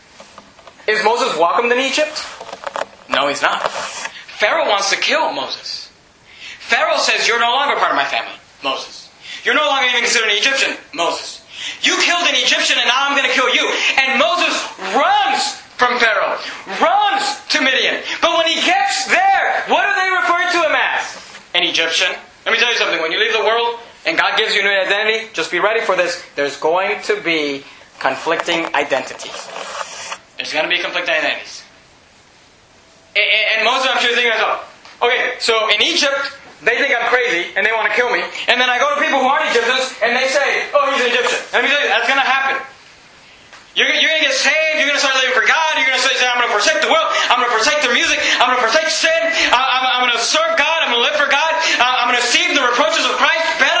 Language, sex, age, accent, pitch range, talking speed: English, male, 30-49, American, 230-315 Hz, 220 wpm